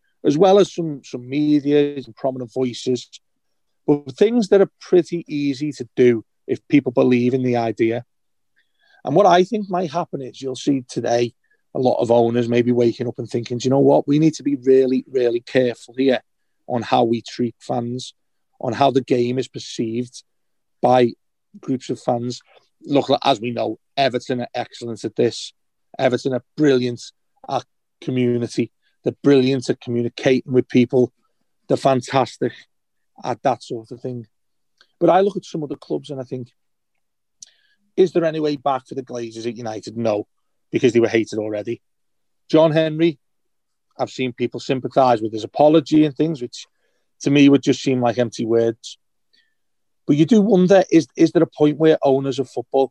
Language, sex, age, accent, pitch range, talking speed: English, male, 40-59, British, 120-145 Hz, 180 wpm